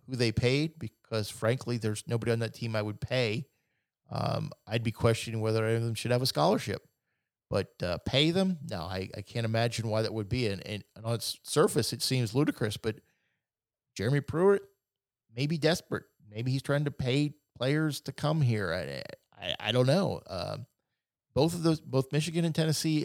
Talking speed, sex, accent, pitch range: 190 wpm, male, American, 110-140 Hz